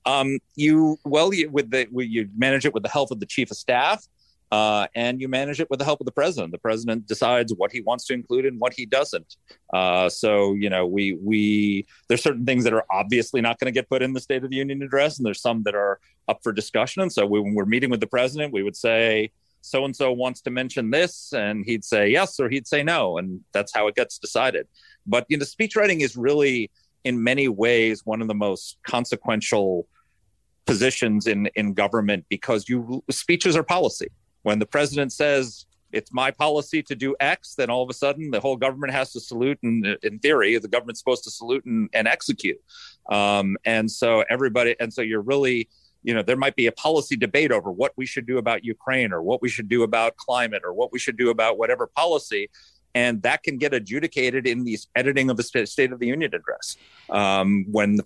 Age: 40-59